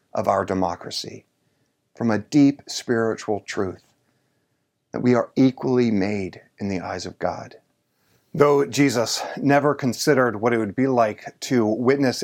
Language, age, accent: English, 40-59, American